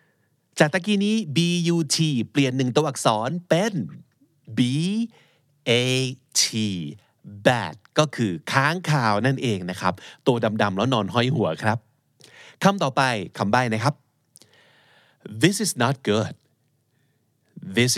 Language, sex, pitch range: Thai, male, 115-150 Hz